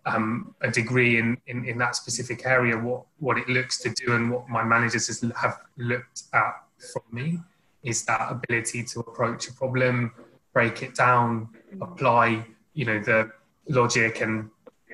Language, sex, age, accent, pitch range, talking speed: English, male, 20-39, British, 115-125 Hz, 160 wpm